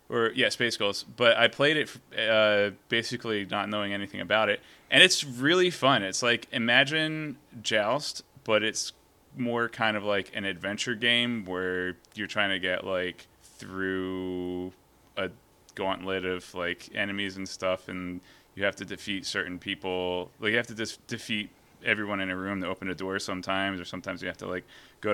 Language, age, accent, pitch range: English, 20-39, American, 95-115 Hz